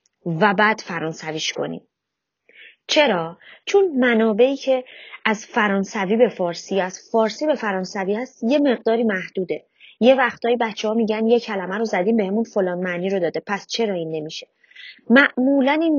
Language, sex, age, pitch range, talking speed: Persian, female, 30-49, 195-255 Hz, 150 wpm